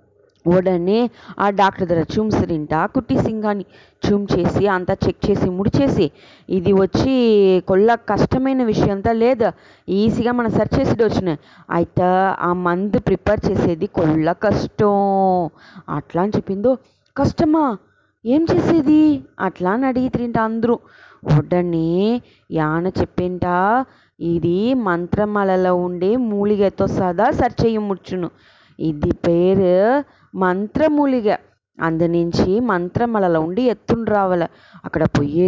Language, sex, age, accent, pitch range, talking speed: English, female, 20-39, Indian, 180-230 Hz, 85 wpm